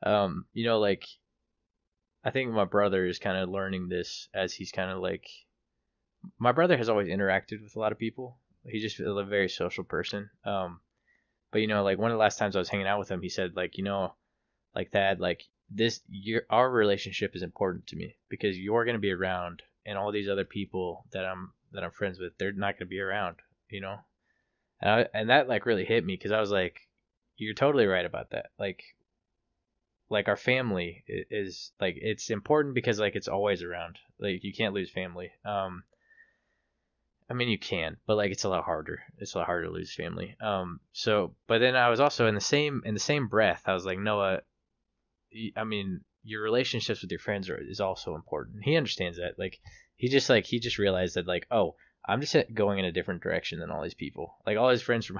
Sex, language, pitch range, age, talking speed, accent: male, English, 95-115 Hz, 20-39, 220 wpm, American